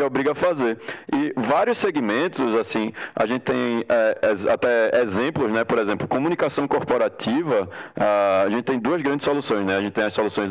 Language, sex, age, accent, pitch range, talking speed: Portuguese, male, 20-39, Brazilian, 110-150 Hz, 175 wpm